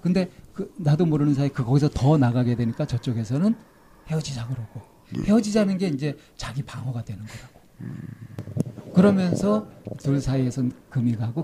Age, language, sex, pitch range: 40-59, Korean, male, 125-155 Hz